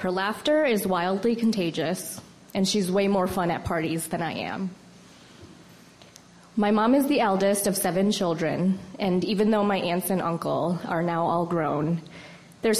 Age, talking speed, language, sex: 20-39, 165 wpm, English, female